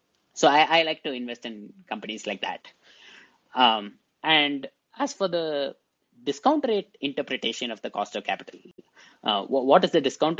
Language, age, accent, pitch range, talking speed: English, 20-39, Indian, 115-175 Hz, 165 wpm